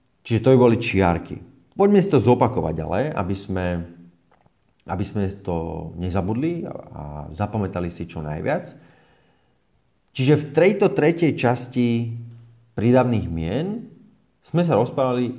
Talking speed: 120 wpm